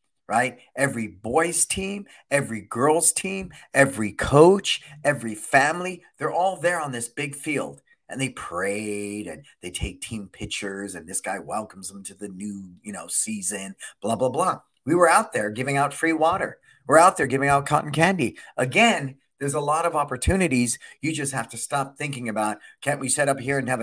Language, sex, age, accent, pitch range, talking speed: English, male, 40-59, American, 115-160 Hz, 190 wpm